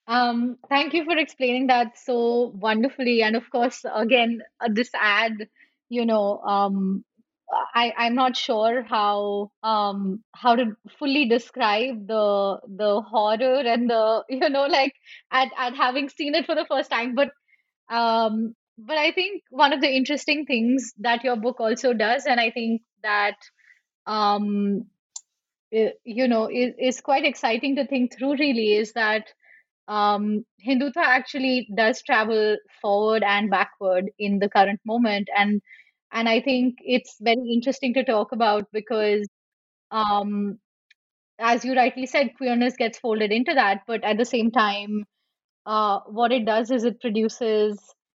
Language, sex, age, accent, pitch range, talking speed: English, female, 20-39, Indian, 215-255 Hz, 155 wpm